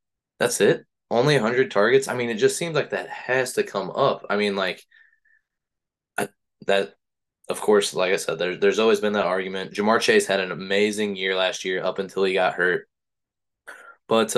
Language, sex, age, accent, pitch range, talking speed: English, male, 20-39, American, 95-135 Hz, 190 wpm